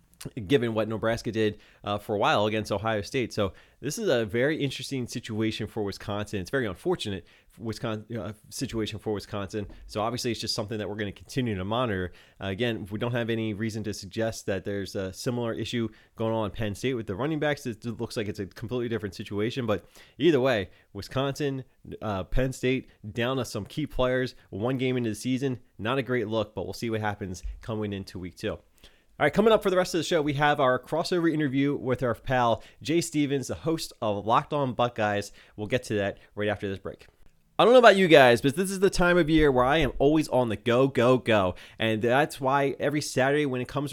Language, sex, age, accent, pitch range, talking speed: English, male, 20-39, American, 110-140 Hz, 225 wpm